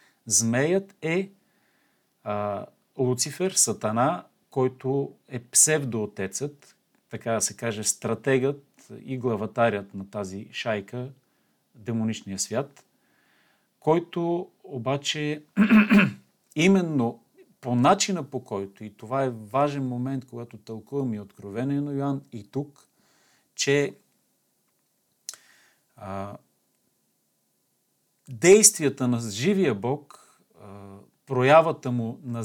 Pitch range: 115-145 Hz